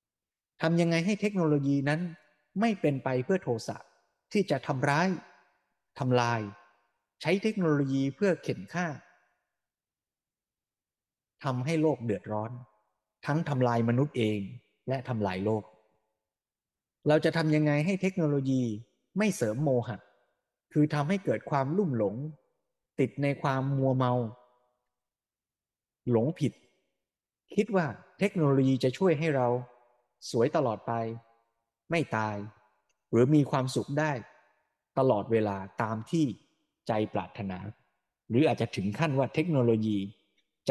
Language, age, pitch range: Thai, 20-39, 115-150 Hz